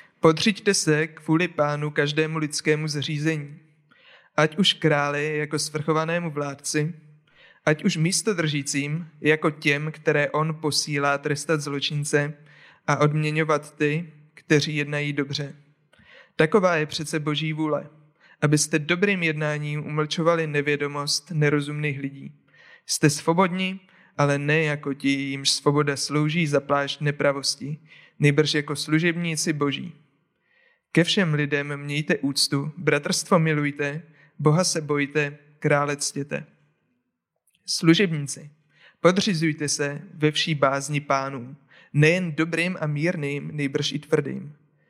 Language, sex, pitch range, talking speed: Czech, male, 145-160 Hz, 110 wpm